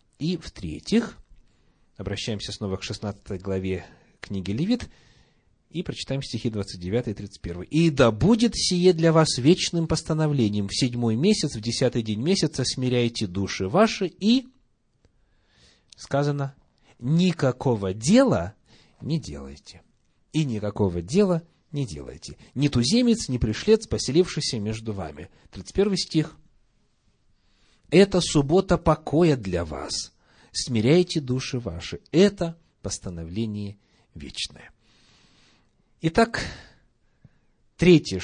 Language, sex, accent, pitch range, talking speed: Russian, male, native, 105-165 Hz, 105 wpm